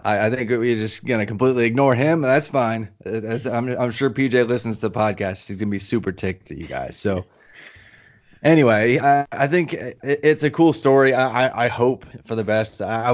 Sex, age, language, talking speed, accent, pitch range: male, 20-39, English, 195 wpm, American, 100-125 Hz